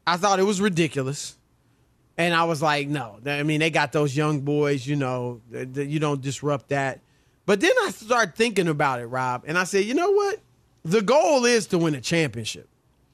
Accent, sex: American, male